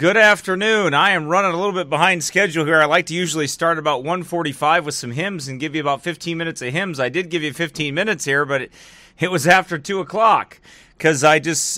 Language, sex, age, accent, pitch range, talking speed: English, male, 30-49, American, 140-175 Hz, 230 wpm